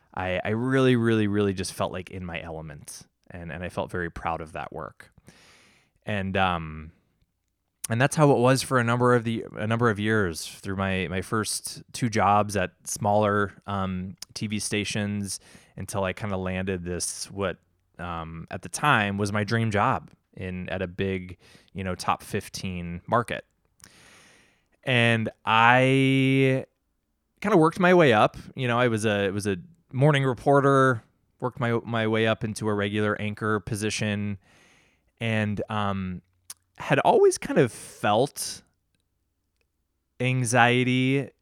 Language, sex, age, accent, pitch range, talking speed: English, male, 20-39, American, 90-120 Hz, 155 wpm